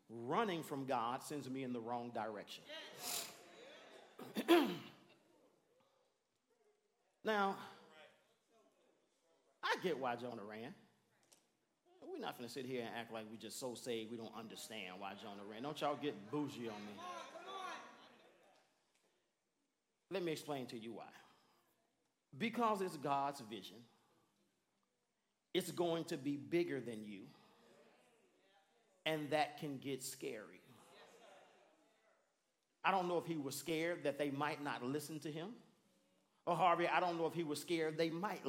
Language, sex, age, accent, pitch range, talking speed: English, male, 40-59, American, 120-175 Hz, 135 wpm